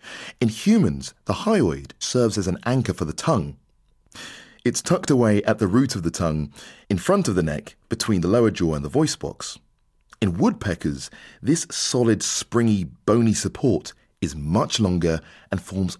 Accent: British